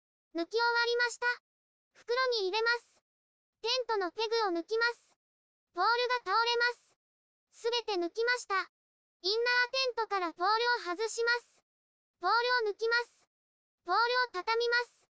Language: Japanese